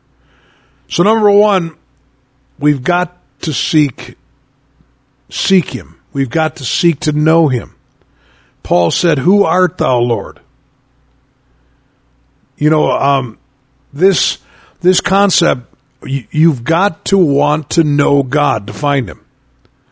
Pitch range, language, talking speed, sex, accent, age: 130-170 Hz, English, 120 wpm, male, American, 50-69